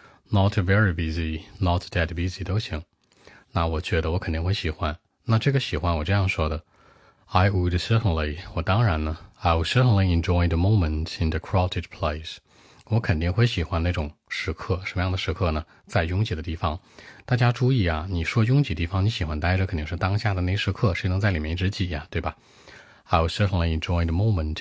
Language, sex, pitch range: Chinese, male, 85-100 Hz